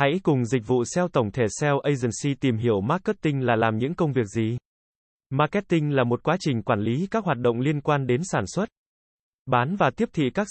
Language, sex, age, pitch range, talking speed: Vietnamese, male, 20-39, 125-165 Hz, 215 wpm